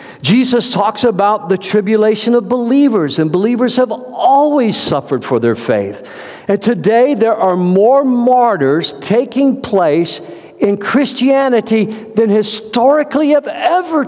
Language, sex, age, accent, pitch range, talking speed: English, male, 50-69, American, 180-245 Hz, 125 wpm